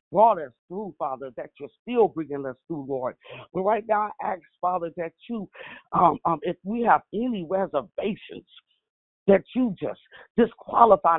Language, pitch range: English, 170-245 Hz